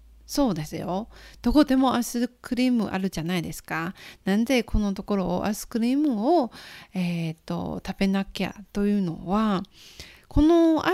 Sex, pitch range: female, 190-255 Hz